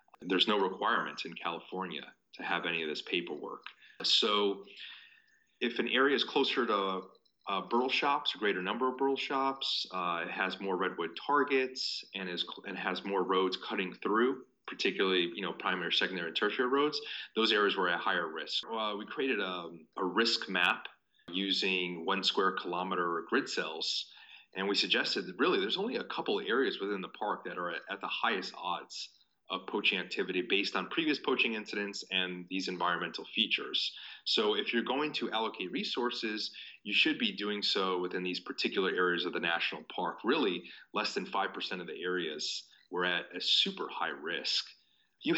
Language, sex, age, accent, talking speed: English, male, 30-49, American, 175 wpm